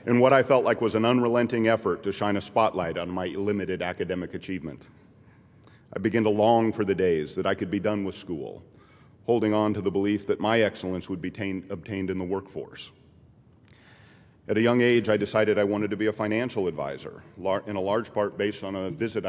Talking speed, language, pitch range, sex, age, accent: 210 wpm, English, 95-115 Hz, male, 40-59, American